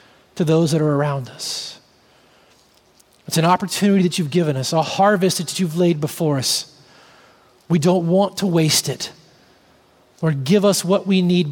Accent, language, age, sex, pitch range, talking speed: American, English, 30-49, male, 140-180 Hz, 165 wpm